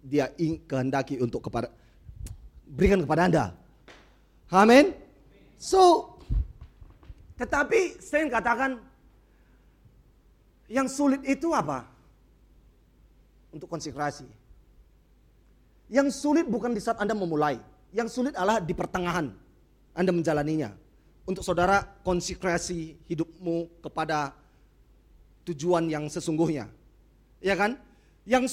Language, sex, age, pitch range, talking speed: English, male, 30-49, 175-285 Hz, 90 wpm